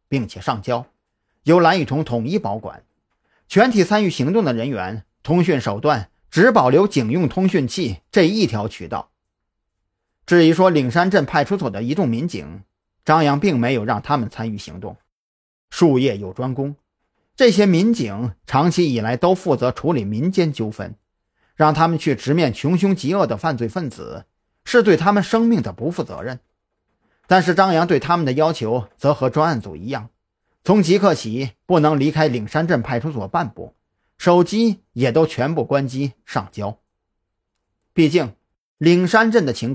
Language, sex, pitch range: Chinese, male, 115-170 Hz